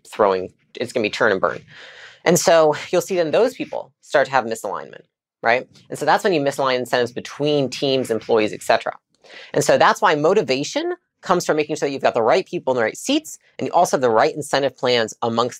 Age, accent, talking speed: 30-49, American, 230 wpm